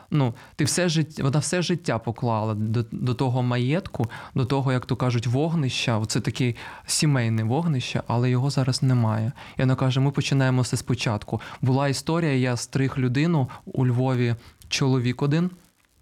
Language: Ukrainian